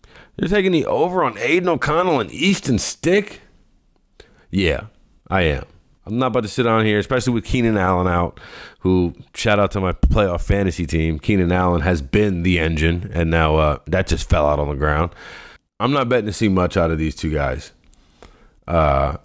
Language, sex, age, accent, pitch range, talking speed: English, male, 30-49, American, 80-95 Hz, 190 wpm